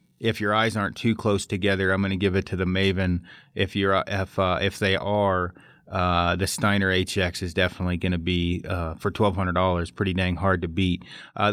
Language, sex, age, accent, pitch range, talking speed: English, male, 30-49, American, 95-110 Hz, 210 wpm